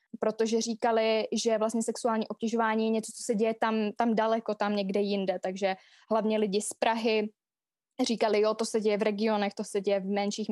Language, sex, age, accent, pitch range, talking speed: Czech, female, 20-39, native, 205-235 Hz, 195 wpm